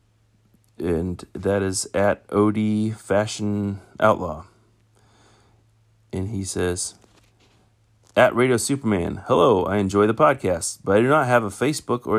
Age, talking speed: 30-49, 130 wpm